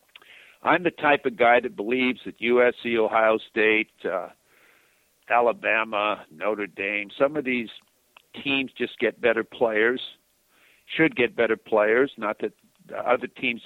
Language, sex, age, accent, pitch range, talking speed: English, male, 50-69, American, 110-130 Hz, 140 wpm